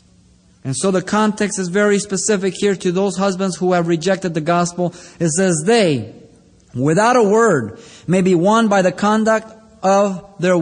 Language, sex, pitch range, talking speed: English, male, 160-215 Hz, 170 wpm